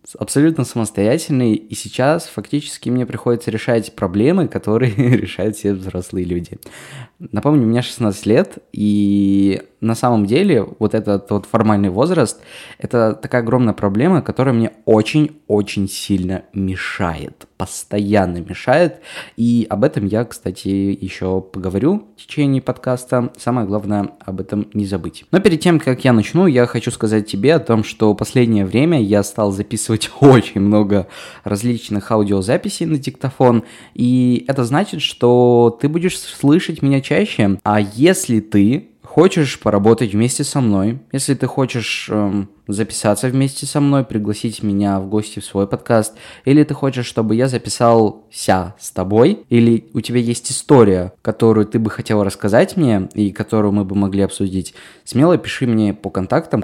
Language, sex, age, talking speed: Russian, male, 20-39, 150 wpm